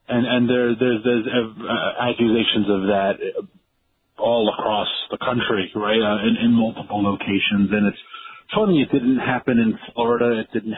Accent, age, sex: American, 40-59, male